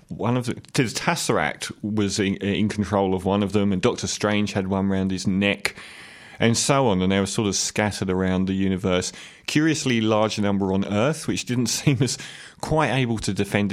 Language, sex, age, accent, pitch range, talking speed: English, male, 30-49, British, 95-110 Hz, 200 wpm